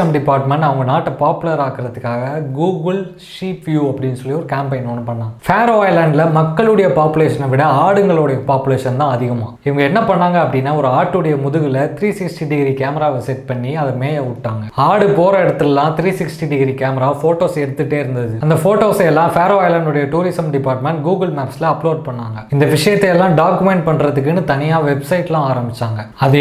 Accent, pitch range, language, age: native, 135-175 Hz, Tamil, 20-39